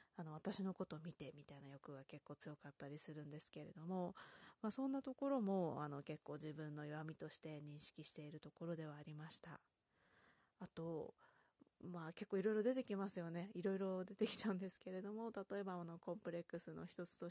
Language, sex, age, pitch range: Japanese, female, 20-39, 160-230 Hz